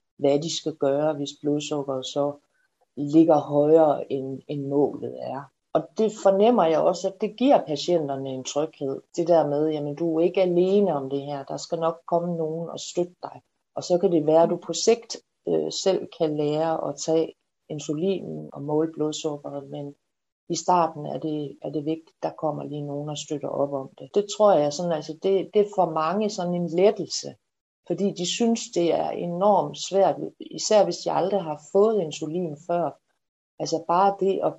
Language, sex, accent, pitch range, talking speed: Danish, female, native, 145-185 Hz, 195 wpm